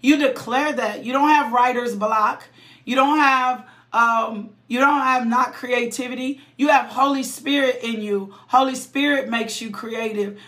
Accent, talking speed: American, 160 wpm